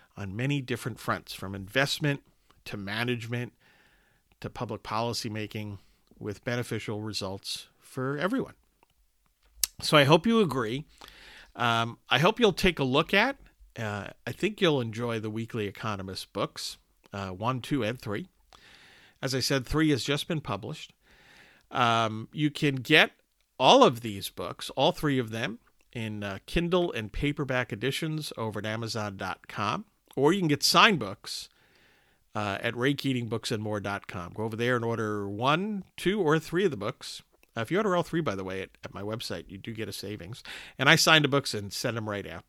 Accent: American